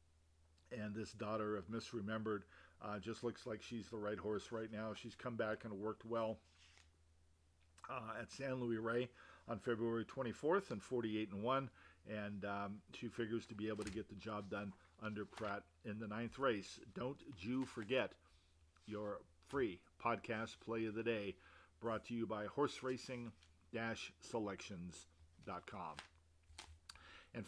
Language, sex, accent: English, male, American